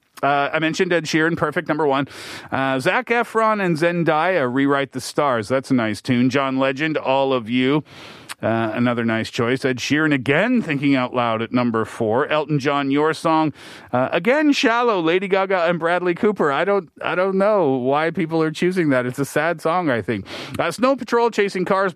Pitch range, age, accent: 120-180 Hz, 40-59, American